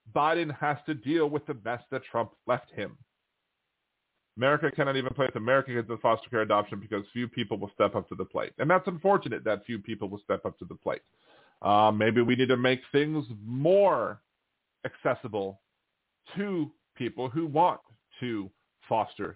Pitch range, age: 105-140 Hz, 40-59